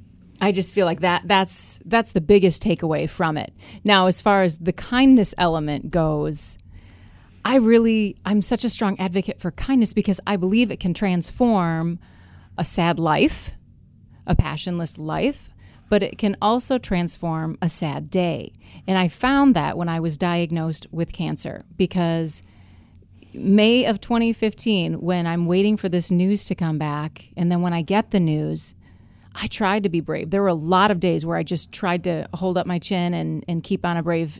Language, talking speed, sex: English, 185 wpm, female